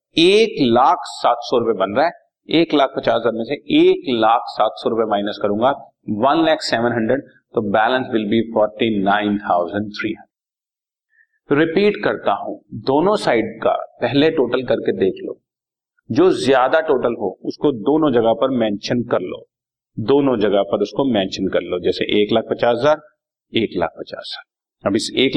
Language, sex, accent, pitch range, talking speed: Hindi, male, native, 105-155 Hz, 140 wpm